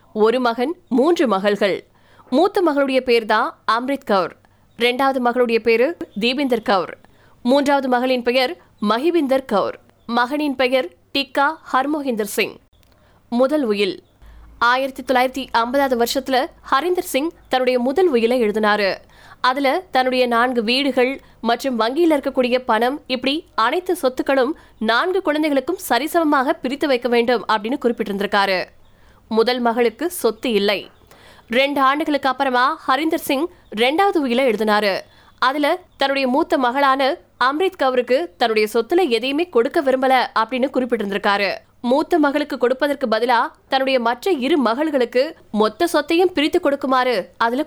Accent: native